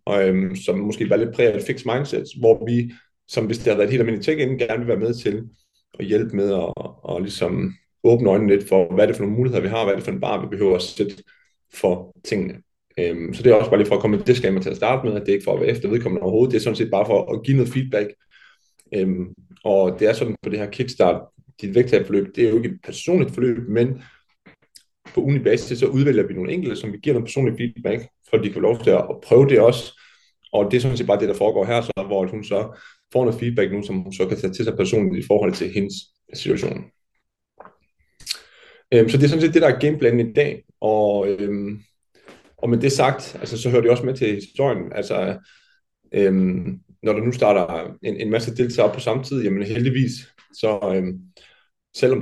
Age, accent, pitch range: 30-49, native, 100-130 Hz